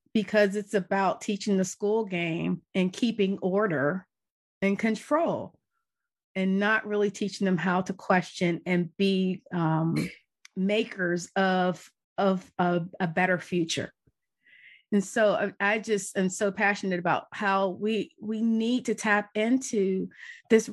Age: 30-49